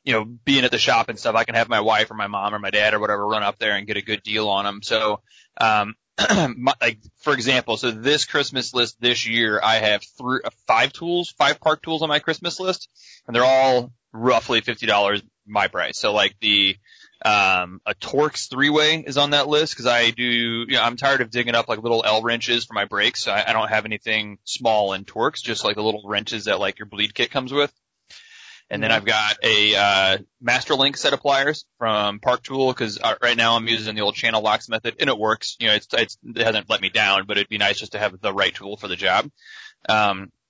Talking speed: 240 wpm